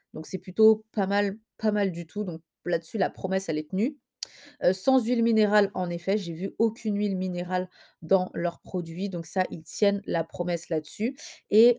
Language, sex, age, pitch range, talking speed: French, female, 20-39, 185-230 Hz, 195 wpm